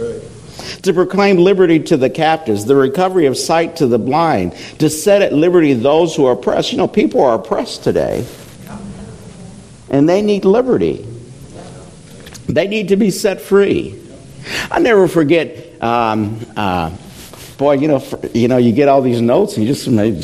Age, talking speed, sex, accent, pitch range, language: 60-79, 175 wpm, male, American, 105-140 Hz, English